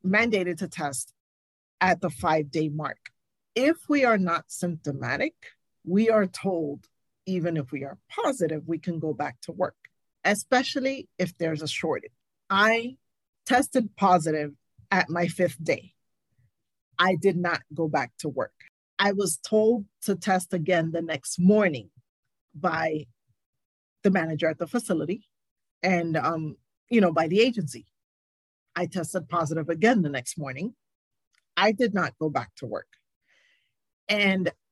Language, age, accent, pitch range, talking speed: English, 40-59, American, 155-200 Hz, 140 wpm